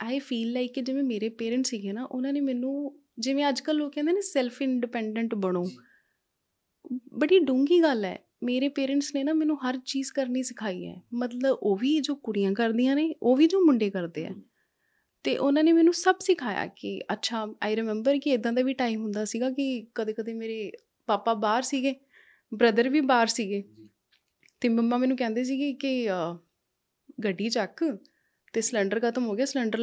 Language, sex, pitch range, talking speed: Punjabi, female, 225-280 Hz, 175 wpm